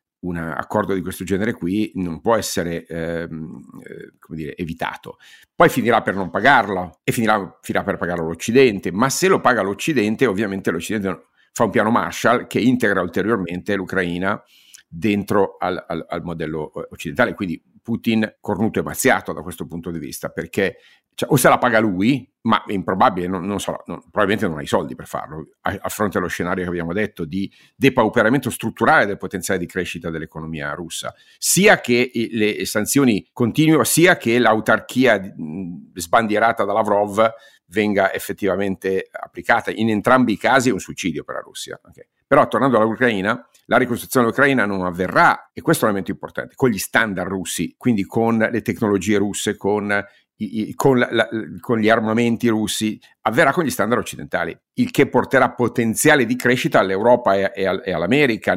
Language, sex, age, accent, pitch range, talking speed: Italian, male, 50-69, native, 85-115 Hz, 165 wpm